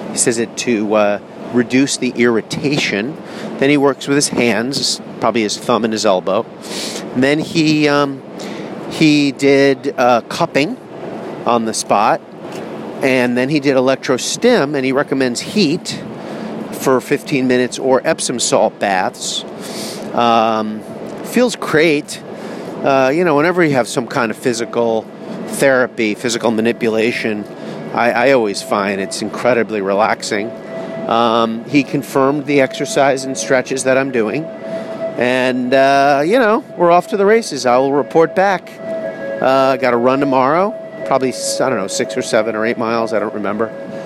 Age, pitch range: 40-59, 115-145 Hz